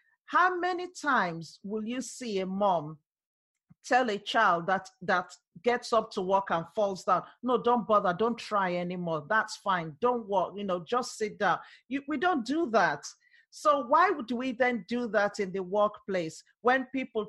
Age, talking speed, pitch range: 50-69, 180 wpm, 185-245 Hz